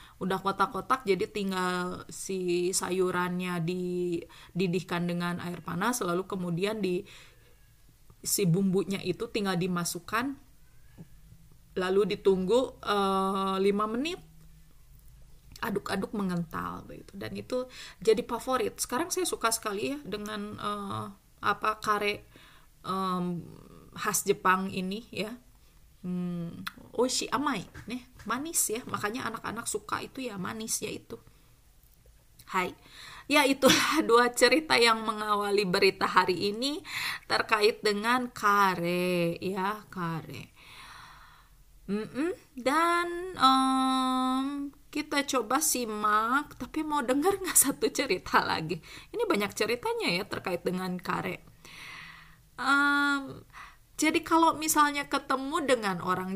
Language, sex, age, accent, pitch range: Japanese, female, 20-39, Indonesian, 185-260 Hz